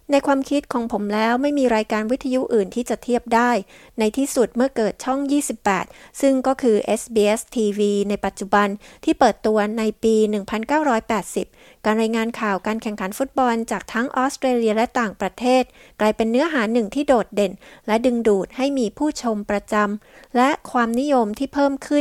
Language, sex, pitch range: Thai, female, 210-255 Hz